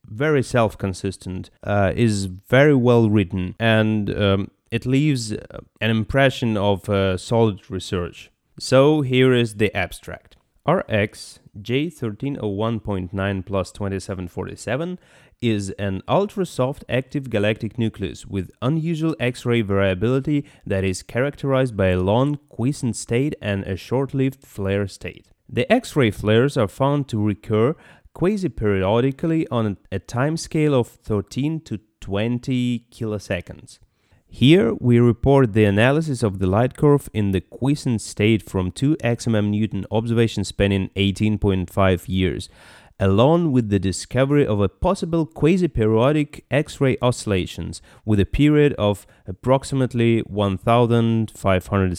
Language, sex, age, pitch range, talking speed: English, male, 30-49, 100-130 Hz, 115 wpm